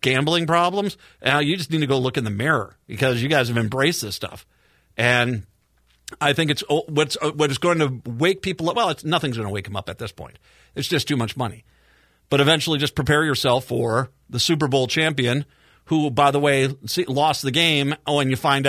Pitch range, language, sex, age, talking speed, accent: 120-160 Hz, English, male, 40-59, 215 wpm, American